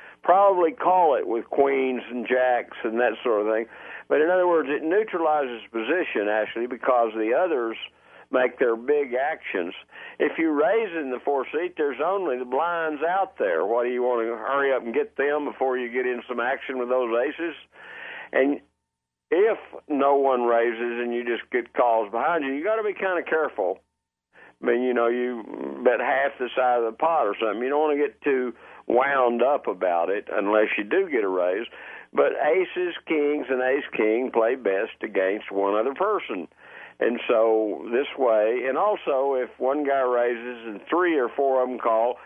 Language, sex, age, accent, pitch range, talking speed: English, male, 50-69, American, 115-160 Hz, 195 wpm